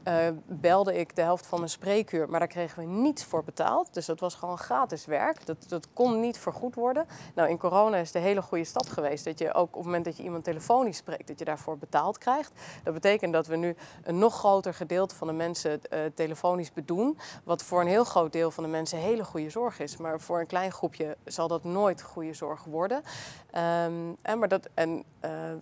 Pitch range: 160-190 Hz